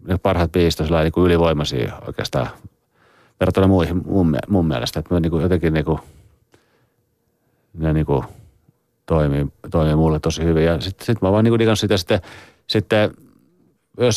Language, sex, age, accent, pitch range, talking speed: Finnish, male, 40-59, native, 80-100 Hz, 155 wpm